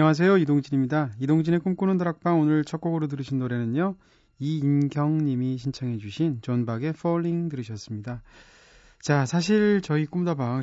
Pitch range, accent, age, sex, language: 120-165 Hz, native, 30-49, male, Korean